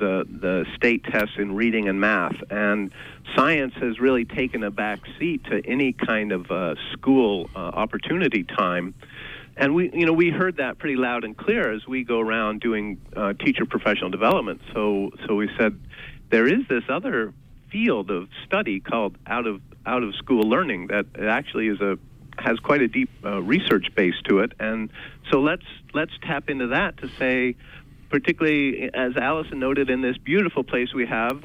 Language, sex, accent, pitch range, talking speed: English, male, American, 115-140 Hz, 180 wpm